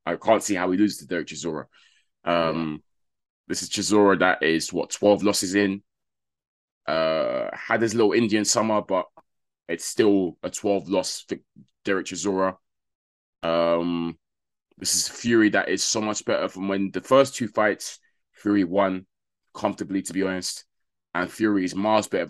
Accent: British